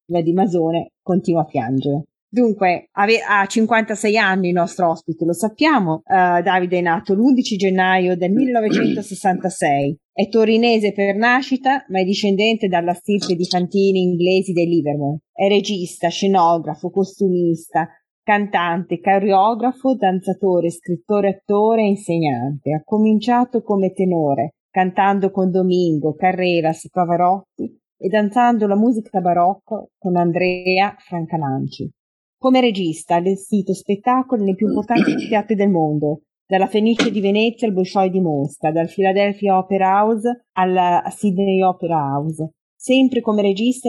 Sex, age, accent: female, 30-49, native